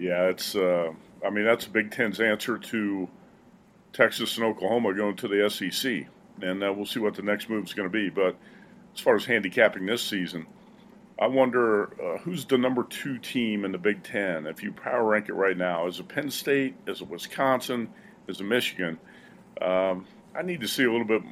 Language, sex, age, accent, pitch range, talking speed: English, male, 50-69, American, 95-120 Hz, 205 wpm